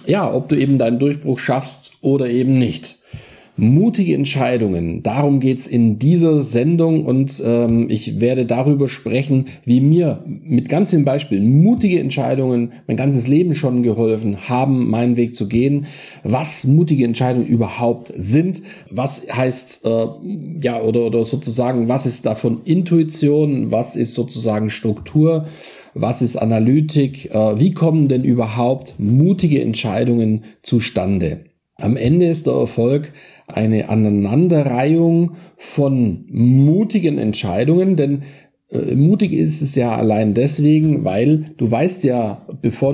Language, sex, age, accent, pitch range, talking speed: German, male, 40-59, German, 115-150 Hz, 135 wpm